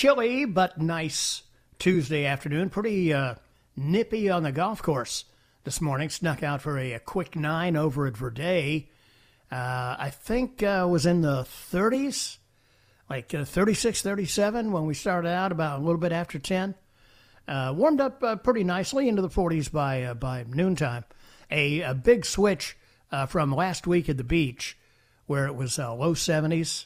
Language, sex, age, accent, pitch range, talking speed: English, male, 60-79, American, 140-195 Hz, 170 wpm